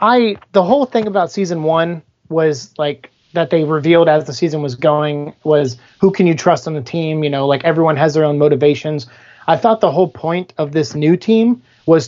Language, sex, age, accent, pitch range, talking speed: English, male, 30-49, American, 150-175 Hz, 215 wpm